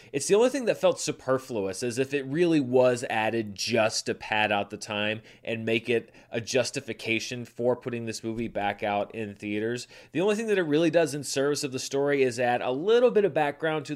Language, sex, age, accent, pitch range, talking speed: English, male, 30-49, American, 110-140 Hz, 225 wpm